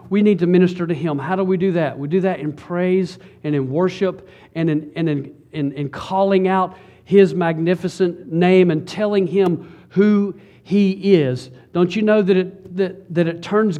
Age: 50-69